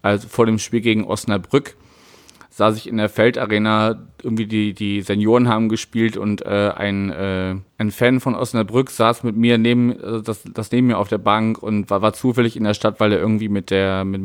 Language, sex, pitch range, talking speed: German, male, 105-115 Hz, 210 wpm